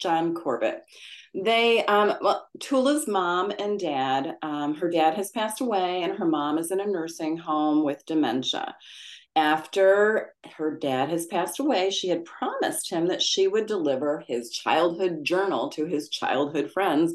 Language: English